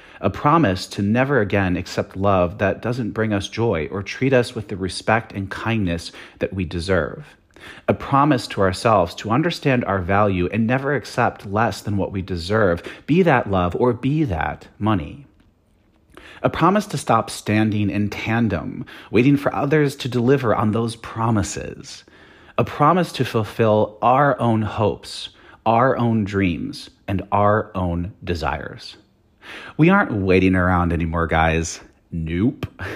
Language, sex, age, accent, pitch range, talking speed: English, male, 40-59, American, 95-120 Hz, 150 wpm